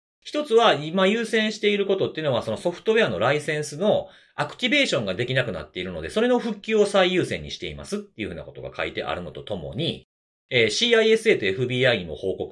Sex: male